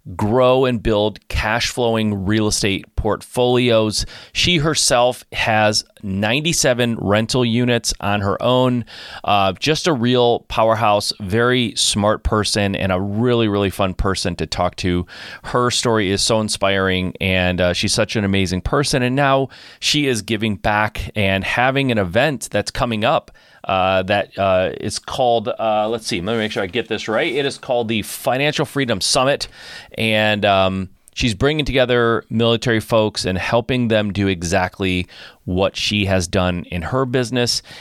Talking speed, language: 155 wpm, English